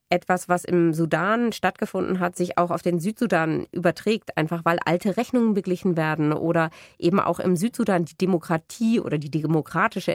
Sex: female